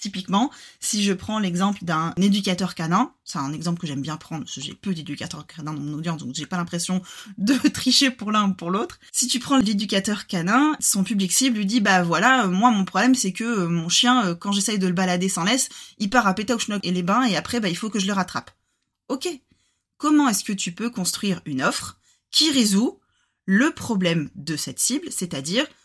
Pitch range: 175-240 Hz